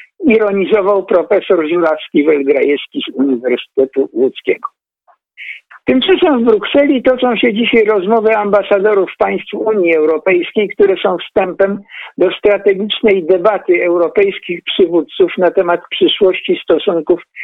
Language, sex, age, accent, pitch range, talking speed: Polish, male, 60-79, native, 185-300 Hz, 100 wpm